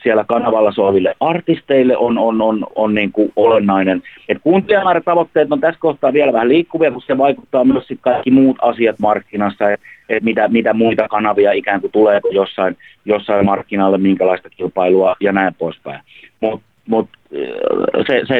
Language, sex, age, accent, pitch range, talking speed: Finnish, male, 30-49, native, 100-125 Hz, 160 wpm